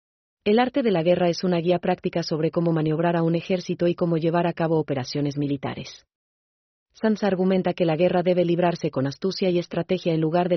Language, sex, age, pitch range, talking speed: German, female, 40-59, 165-190 Hz, 205 wpm